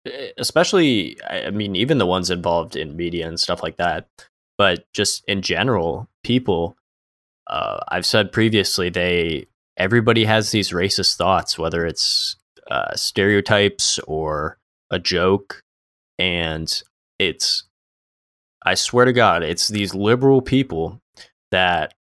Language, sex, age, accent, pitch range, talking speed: English, male, 20-39, American, 90-105 Hz, 125 wpm